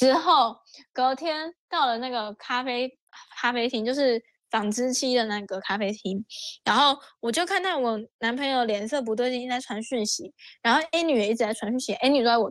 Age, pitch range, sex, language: 10-29, 220-295 Hz, female, Chinese